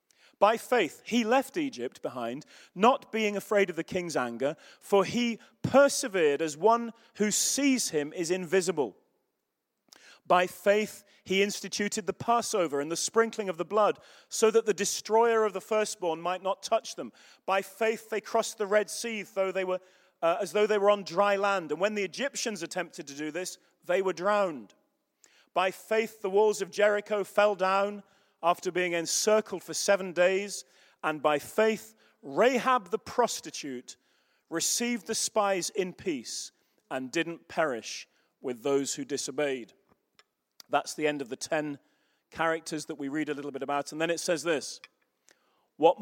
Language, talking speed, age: English, 165 wpm, 40-59